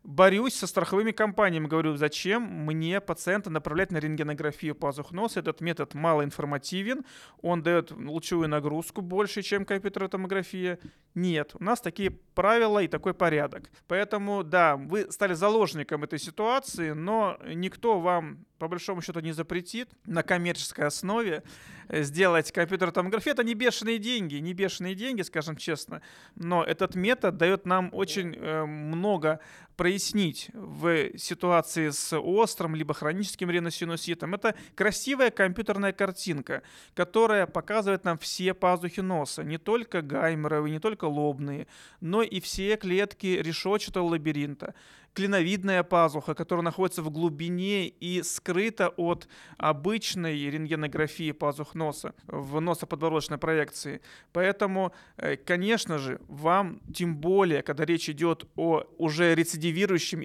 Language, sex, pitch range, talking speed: Russian, male, 160-195 Hz, 125 wpm